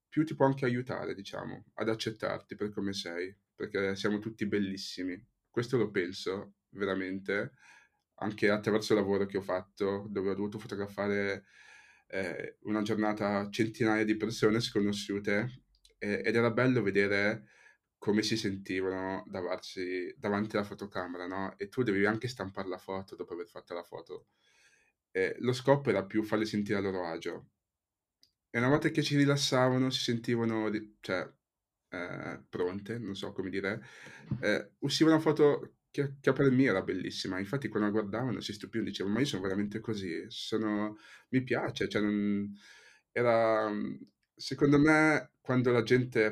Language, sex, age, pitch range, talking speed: Italian, male, 20-39, 100-125 Hz, 155 wpm